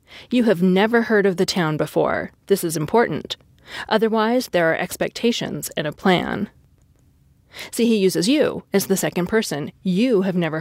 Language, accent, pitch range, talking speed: English, American, 175-215 Hz, 165 wpm